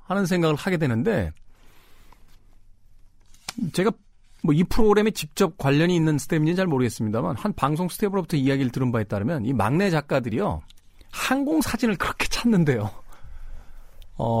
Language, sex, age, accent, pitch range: Korean, male, 40-59, native, 100-140 Hz